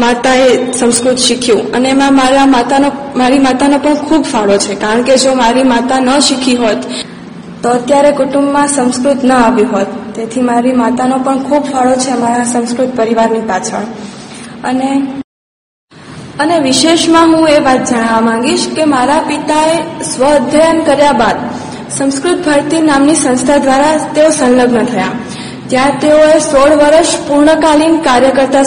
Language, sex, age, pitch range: Gujarati, female, 20-39, 245-295 Hz